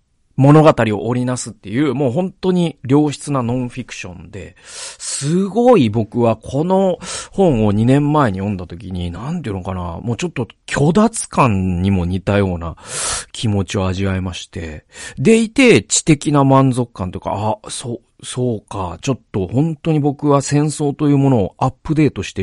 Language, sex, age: Japanese, male, 40-59